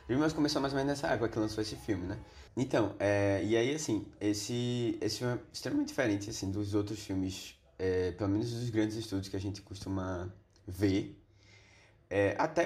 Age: 20-39